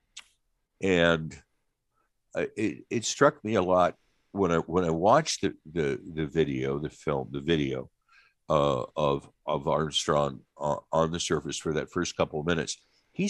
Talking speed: 160 wpm